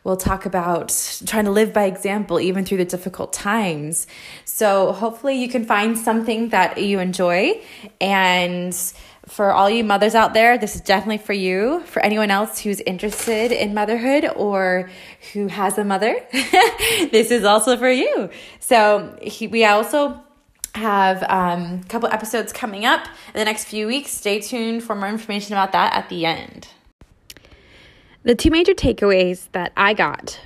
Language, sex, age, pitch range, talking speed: English, female, 20-39, 190-235 Hz, 165 wpm